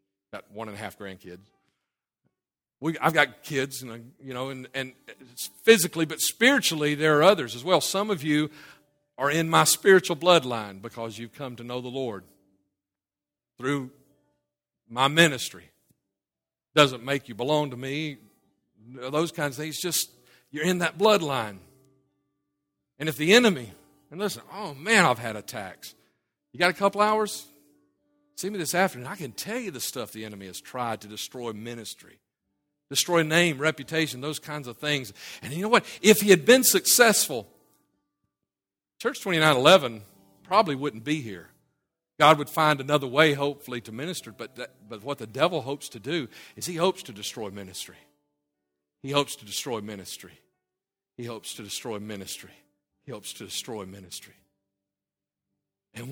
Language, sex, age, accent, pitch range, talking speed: English, male, 50-69, American, 100-155 Hz, 160 wpm